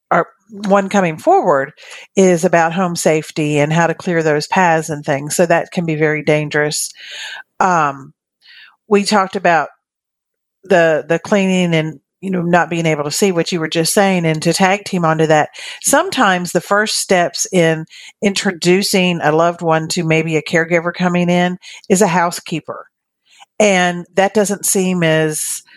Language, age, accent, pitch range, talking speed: English, 50-69, American, 160-200 Hz, 165 wpm